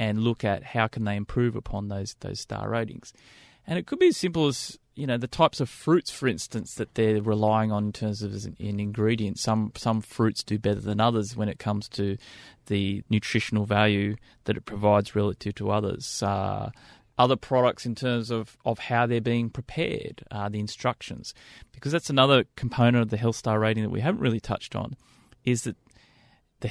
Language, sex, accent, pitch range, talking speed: English, male, Australian, 105-125 Hz, 200 wpm